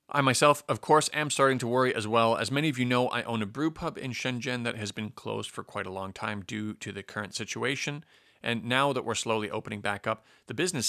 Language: English